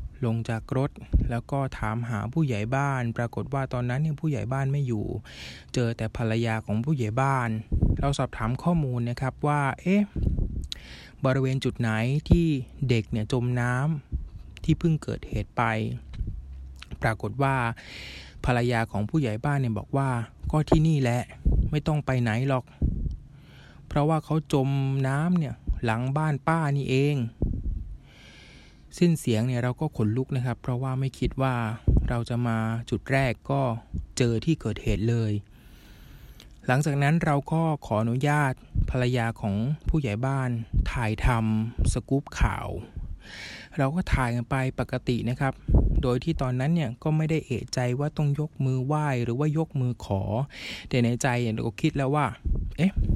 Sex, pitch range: male, 110-140 Hz